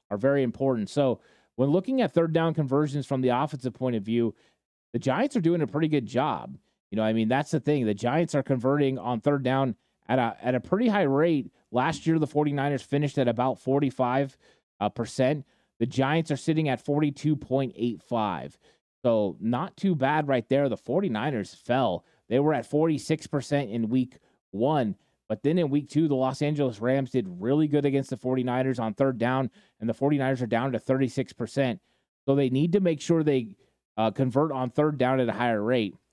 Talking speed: 195 wpm